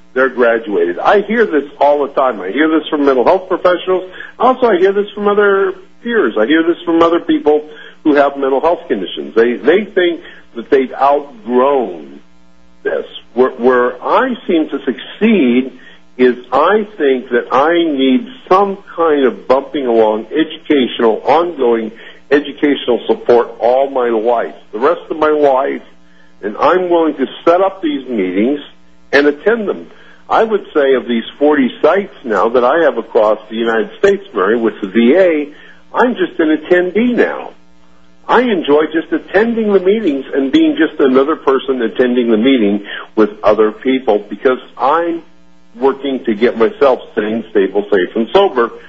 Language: English